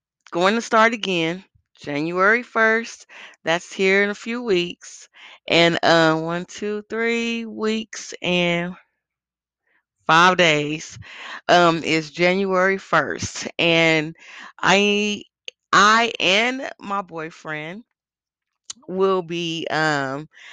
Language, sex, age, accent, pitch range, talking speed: English, female, 30-49, American, 150-185 Hz, 100 wpm